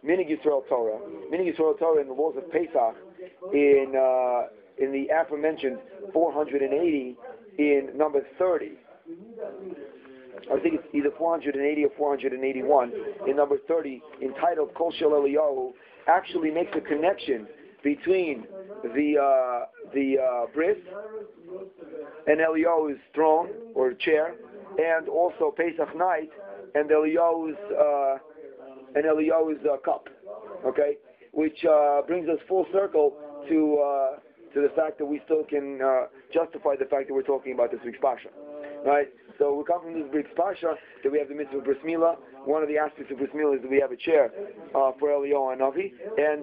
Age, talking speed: 40-59, 155 wpm